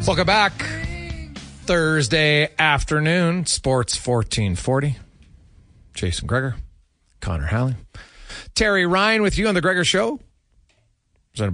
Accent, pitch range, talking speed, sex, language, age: American, 105-155 Hz, 105 wpm, male, English, 40-59